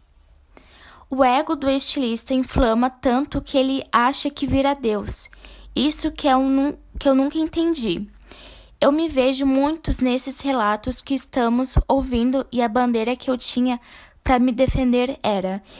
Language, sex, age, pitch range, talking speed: Portuguese, female, 10-29, 240-275 Hz, 135 wpm